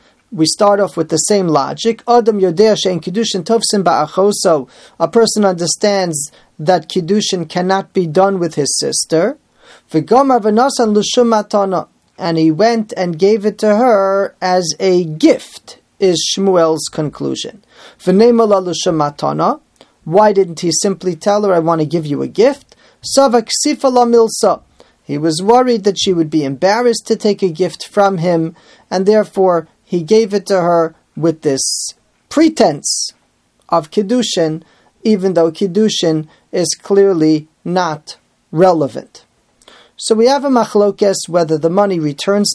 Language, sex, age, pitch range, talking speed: English, male, 30-49, 165-215 Hz, 125 wpm